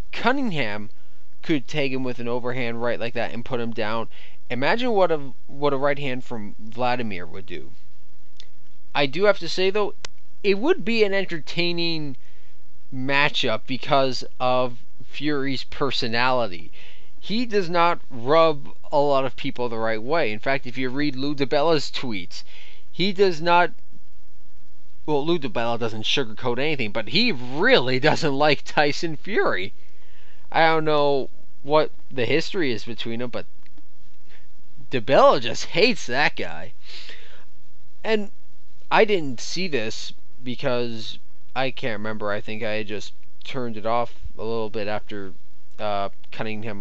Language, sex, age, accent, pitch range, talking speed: English, male, 20-39, American, 115-160 Hz, 145 wpm